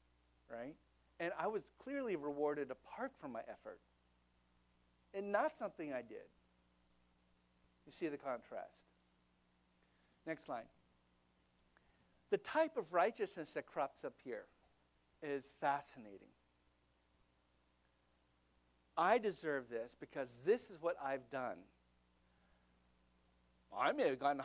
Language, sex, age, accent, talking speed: English, male, 50-69, American, 110 wpm